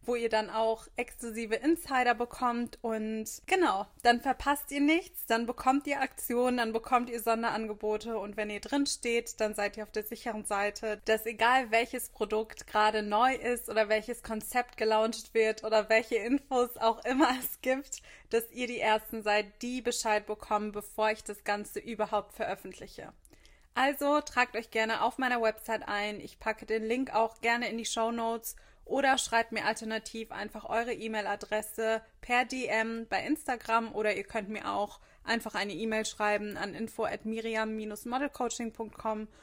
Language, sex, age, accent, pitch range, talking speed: German, female, 20-39, German, 220-245 Hz, 165 wpm